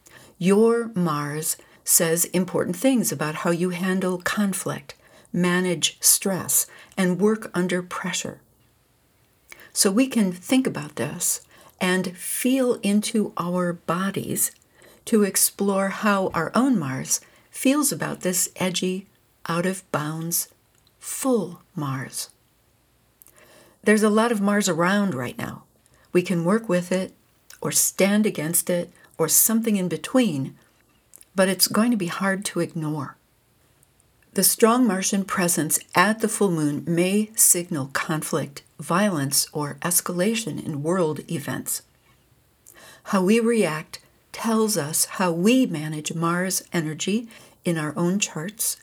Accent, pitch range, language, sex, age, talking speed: American, 160-210 Hz, English, female, 60-79, 125 wpm